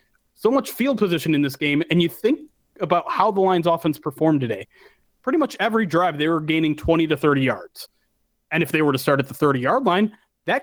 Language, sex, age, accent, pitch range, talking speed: English, male, 30-49, American, 155-225 Hz, 220 wpm